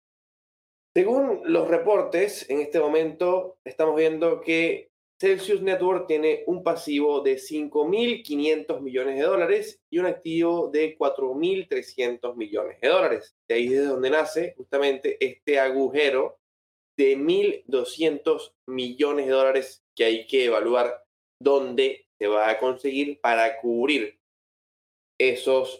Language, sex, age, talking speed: Spanish, male, 20-39, 125 wpm